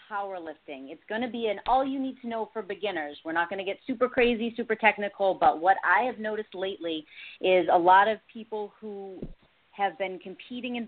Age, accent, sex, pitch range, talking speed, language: 30-49, American, female, 175-220 Hz, 175 wpm, English